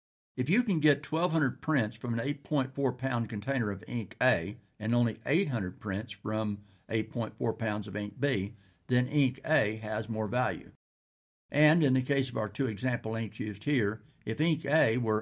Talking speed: 175 wpm